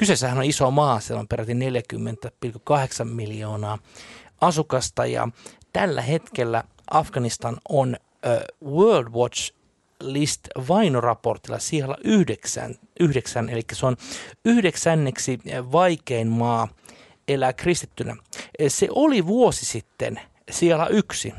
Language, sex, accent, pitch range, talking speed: Finnish, male, native, 115-155 Hz, 105 wpm